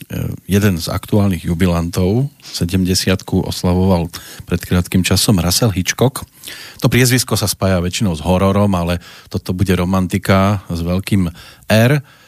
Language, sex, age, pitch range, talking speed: Slovak, male, 40-59, 90-110 Hz, 120 wpm